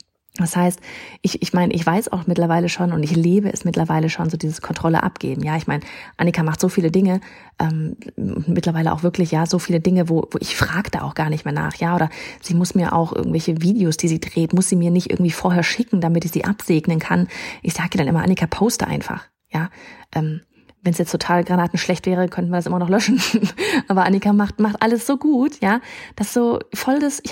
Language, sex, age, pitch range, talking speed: German, female, 30-49, 165-200 Hz, 225 wpm